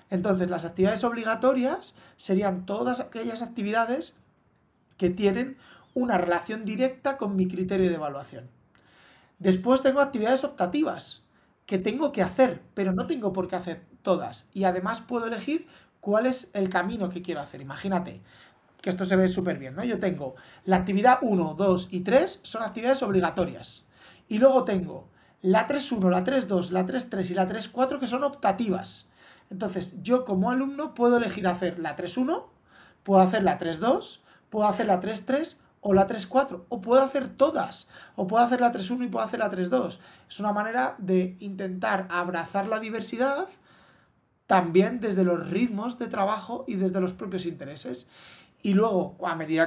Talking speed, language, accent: 165 wpm, Spanish, Spanish